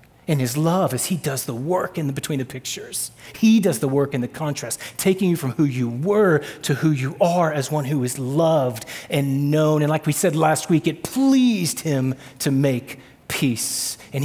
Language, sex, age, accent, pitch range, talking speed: English, male, 30-49, American, 130-165 Hz, 210 wpm